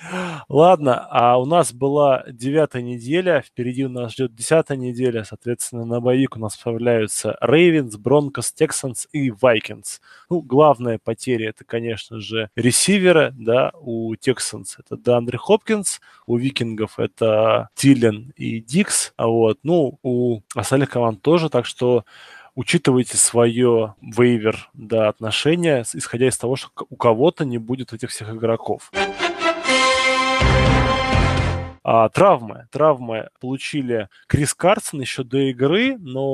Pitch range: 115-155 Hz